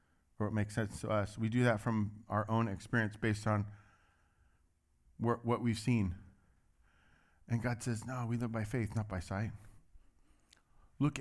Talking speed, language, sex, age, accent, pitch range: 160 wpm, English, male, 40-59, American, 95-125 Hz